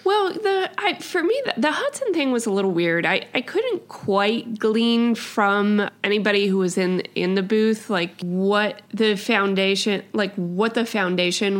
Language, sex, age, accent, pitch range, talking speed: English, female, 20-39, American, 175-215 Hz, 175 wpm